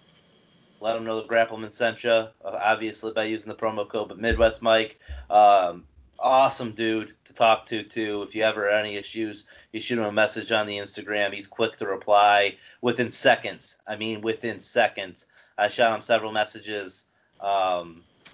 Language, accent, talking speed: English, American, 175 wpm